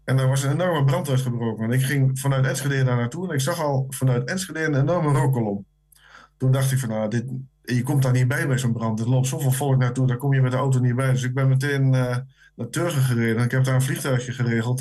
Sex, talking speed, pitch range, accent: male, 255 wpm, 125-145 Hz, Dutch